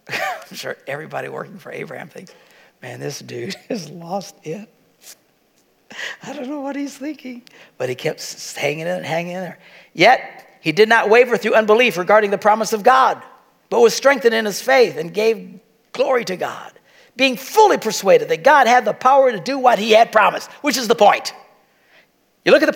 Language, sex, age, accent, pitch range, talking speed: English, male, 60-79, American, 215-310 Hz, 190 wpm